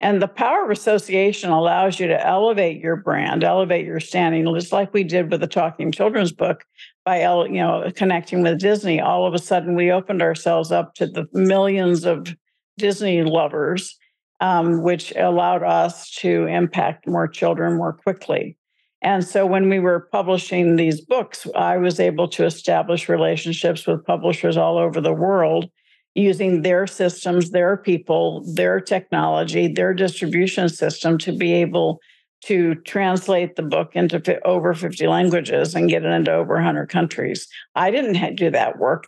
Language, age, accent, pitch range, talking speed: English, 50-69, American, 170-195 Hz, 165 wpm